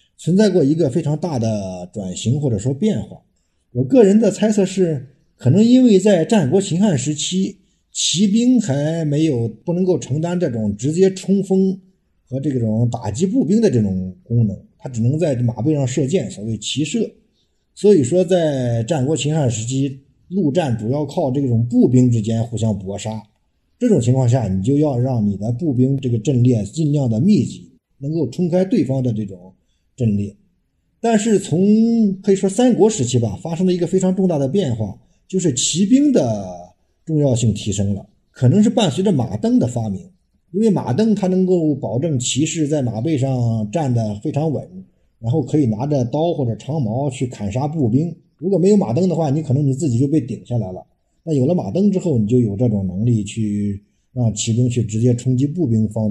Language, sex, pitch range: Chinese, male, 115-185 Hz